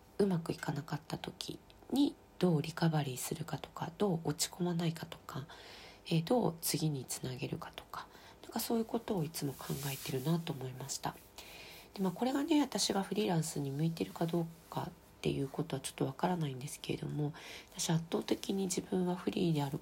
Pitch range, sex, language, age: 145-180 Hz, female, Japanese, 40-59